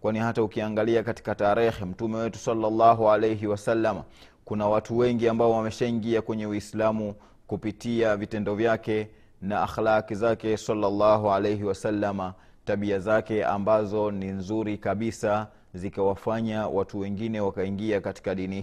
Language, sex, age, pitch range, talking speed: Swahili, male, 30-49, 105-120 Hz, 120 wpm